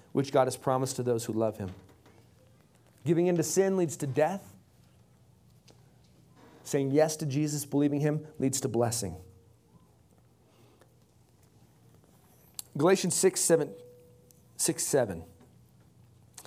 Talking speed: 100 wpm